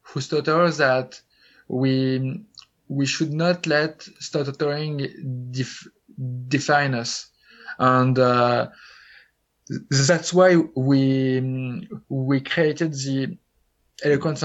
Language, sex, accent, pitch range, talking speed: English, male, French, 130-155 Hz, 85 wpm